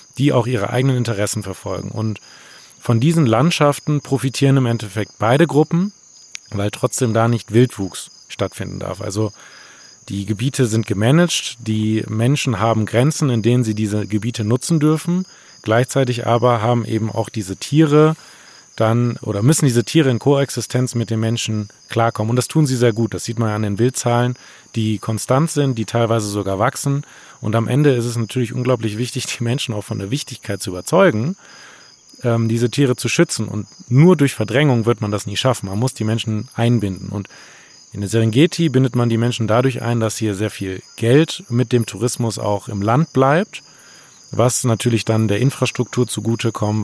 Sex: male